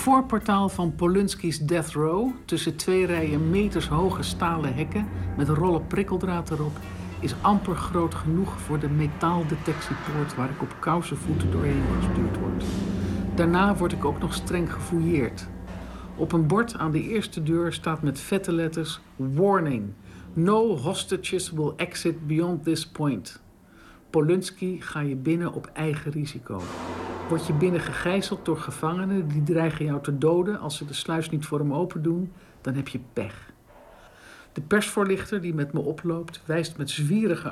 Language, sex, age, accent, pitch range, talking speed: Dutch, male, 50-69, Dutch, 135-175 Hz, 155 wpm